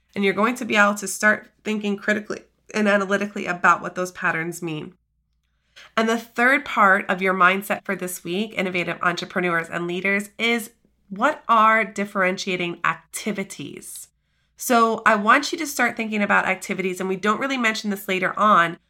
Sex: female